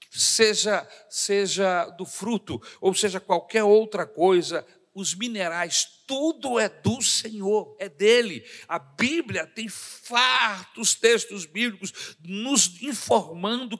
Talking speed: 110 wpm